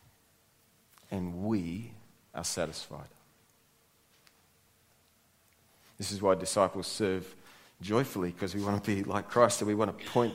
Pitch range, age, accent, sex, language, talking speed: 95-120 Hz, 30-49, Australian, male, English, 130 wpm